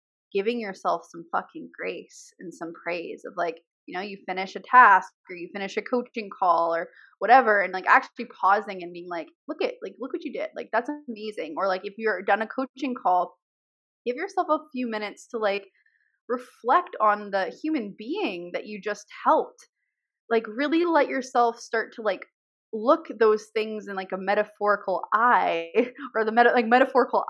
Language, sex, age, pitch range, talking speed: English, female, 20-39, 185-255 Hz, 185 wpm